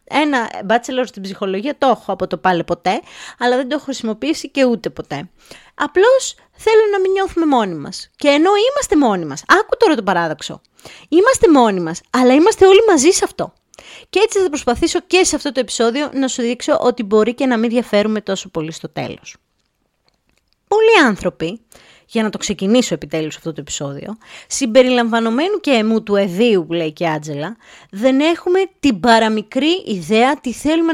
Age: 20-39